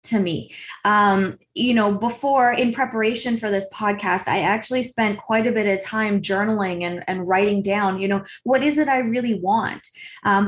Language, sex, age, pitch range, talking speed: English, female, 20-39, 200-240 Hz, 190 wpm